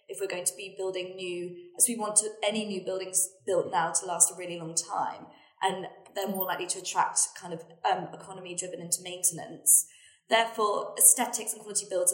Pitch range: 180-240 Hz